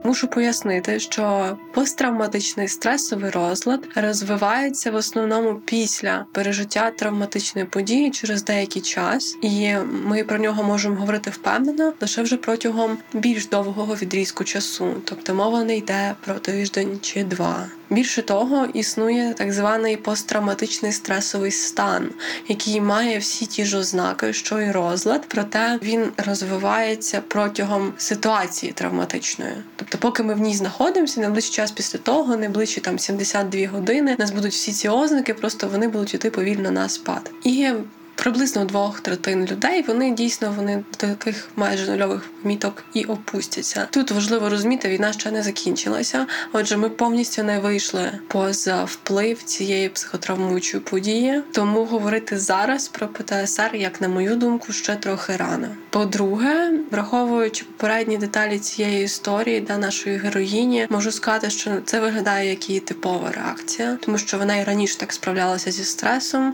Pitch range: 200-230 Hz